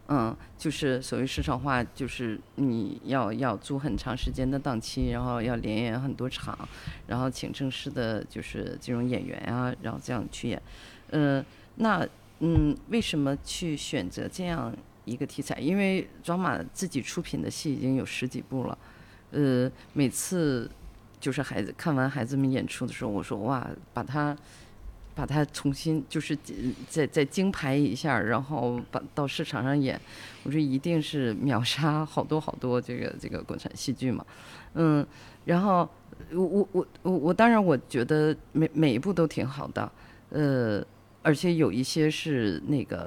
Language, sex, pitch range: Chinese, female, 125-160 Hz